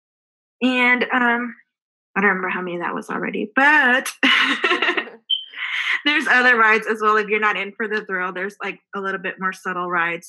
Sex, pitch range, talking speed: female, 190-245 Hz, 180 wpm